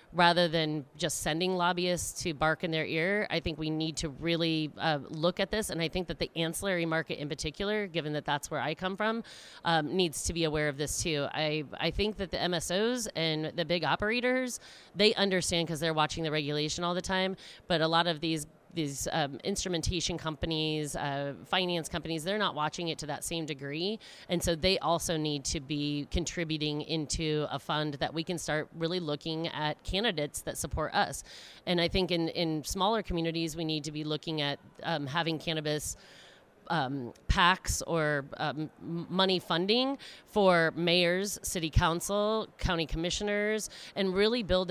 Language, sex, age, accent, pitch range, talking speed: English, female, 30-49, American, 150-175 Hz, 185 wpm